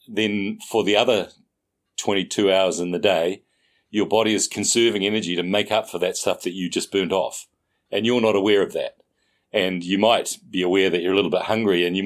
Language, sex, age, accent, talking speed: English, male, 40-59, Australian, 220 wpm